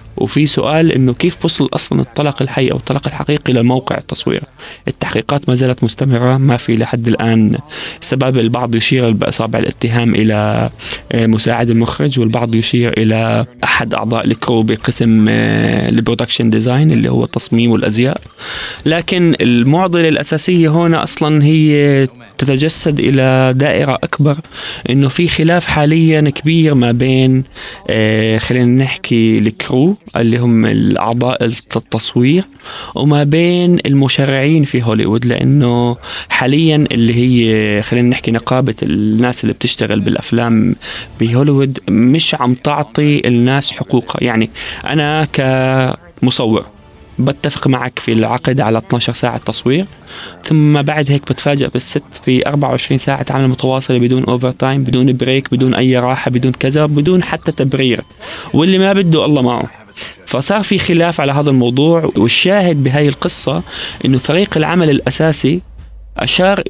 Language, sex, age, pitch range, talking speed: Arabic, male, 20-39, 120-150 Hz, 130 wpm